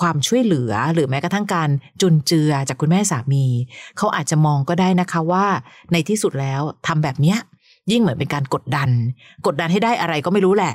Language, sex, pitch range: Thai, female, 145-195 Hz